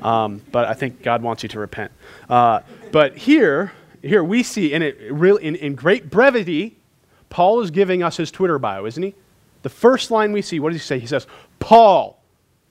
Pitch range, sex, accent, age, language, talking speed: 120-190 Hz, male, American, 30-49, English, 200 wpm